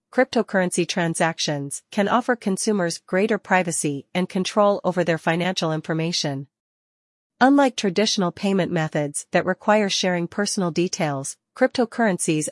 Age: 40-59